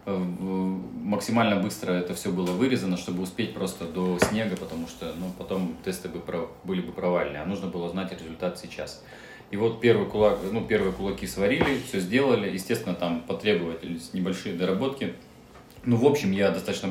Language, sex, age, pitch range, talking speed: Russian, male, 20-39, 85-95 Hz, 155 wpm